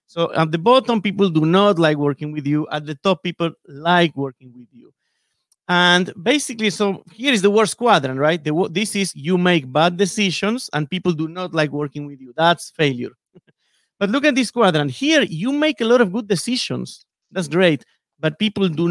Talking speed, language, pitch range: 195 wpm, English, 155-205 Hz